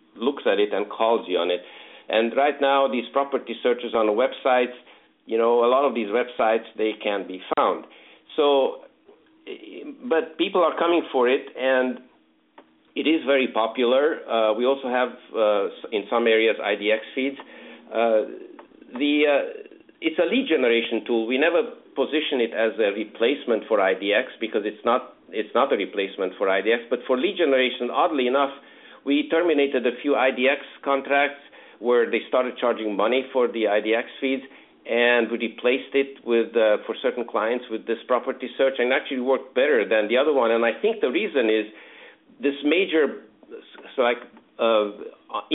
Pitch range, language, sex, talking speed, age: 115-145 Hz, English, male, 165 wpm, 50-69